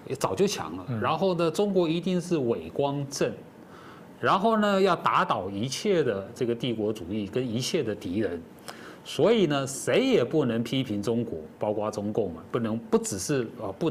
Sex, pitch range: male, 120-195 Hz